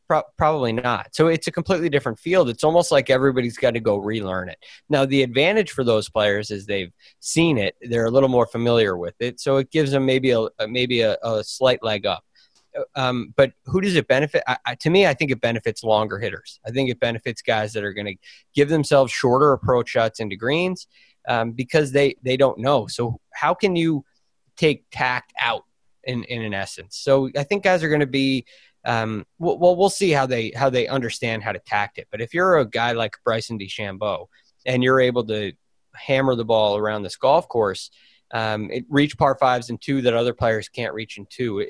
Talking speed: 210 wpm